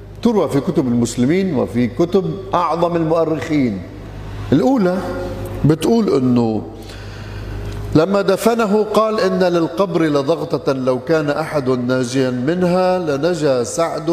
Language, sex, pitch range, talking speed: Arabic, male, 105-160 Hz, 100 wpm